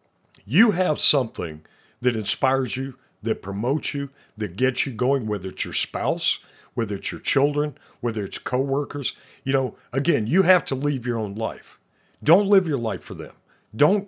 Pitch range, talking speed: 110-155 Hz, 175 wpm